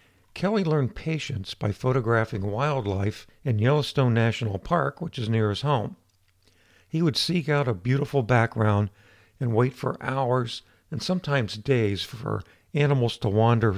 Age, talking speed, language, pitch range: 60-79, 145 wpm, English, 105-140 Hz